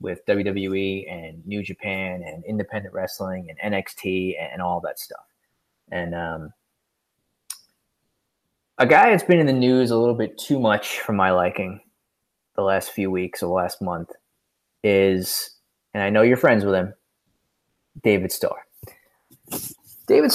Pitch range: 95-155 Hz